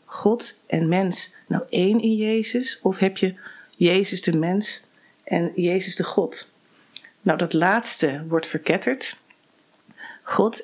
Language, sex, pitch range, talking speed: Dutch, female, 175-220 Hz, 130 wpm